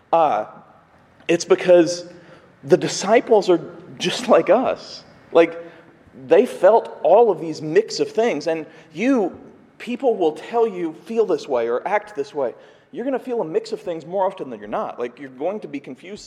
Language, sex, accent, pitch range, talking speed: English, male, American, 165-220 Hz, 185 wpm